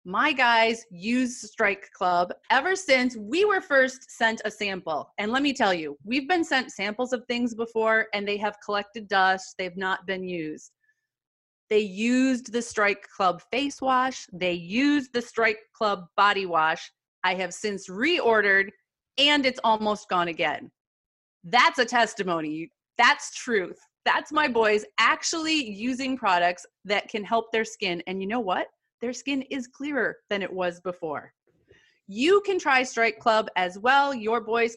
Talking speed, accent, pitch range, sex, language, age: 160 wpm, American, 185-255 Hz, female, English, 30-49